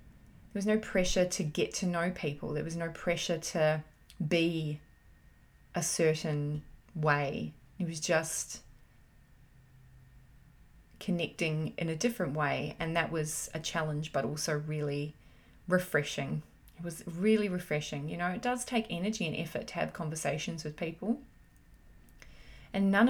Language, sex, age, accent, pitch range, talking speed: English, female, 20-39, Australian, 150-180 Hz, 140 wpm